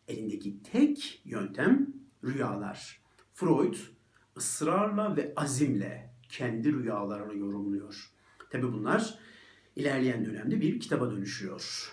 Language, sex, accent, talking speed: Turkish, male, native, 90 wpm